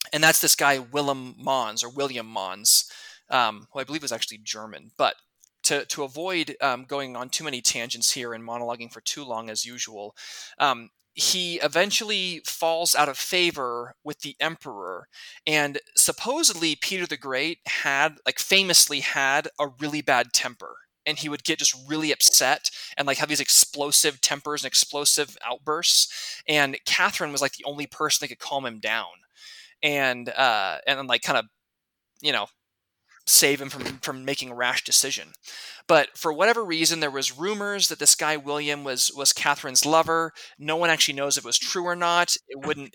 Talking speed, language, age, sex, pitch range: 180 wpm, English, 20-39, male, 135-165 Hz